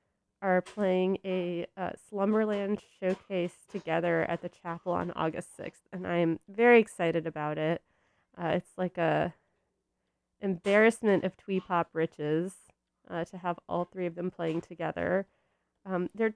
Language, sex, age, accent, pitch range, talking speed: English, female, 20-39, American, 170-205 Hz, 145 wpm